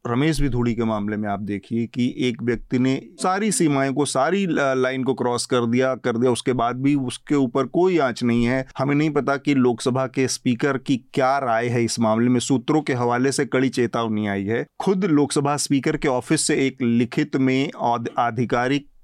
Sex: male